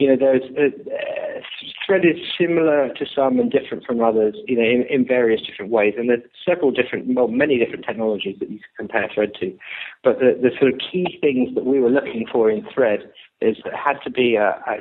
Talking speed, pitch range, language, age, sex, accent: 225 wpm, 115-150 Hz, English, 50-69, male, British